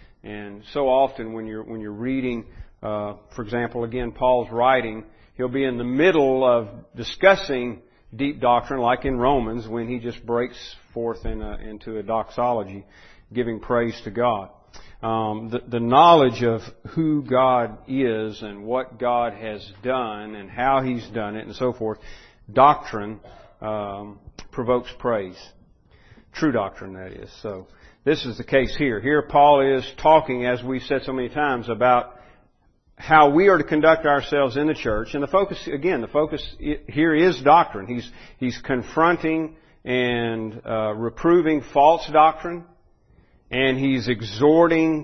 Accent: American